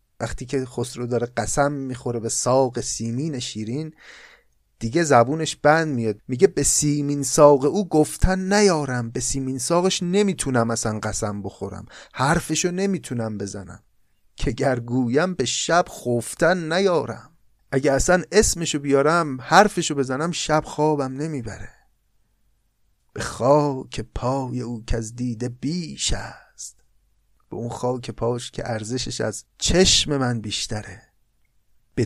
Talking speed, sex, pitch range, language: 125 wpm, male, 115-150 Hz, Persian